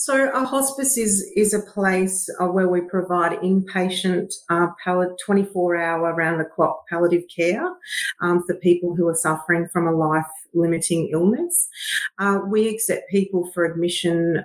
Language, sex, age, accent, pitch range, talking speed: English, female, 40-59, Australian, 165-190 Hz, 145 wpm